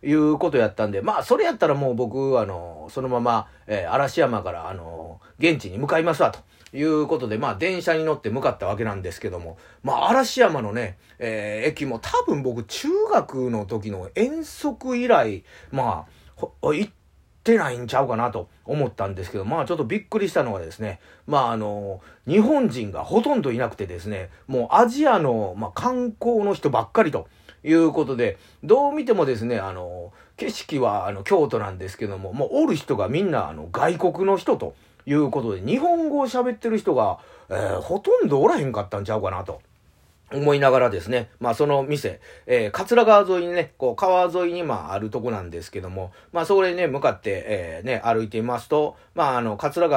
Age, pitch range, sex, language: 30-49, 105-180 Hz, male, Japanese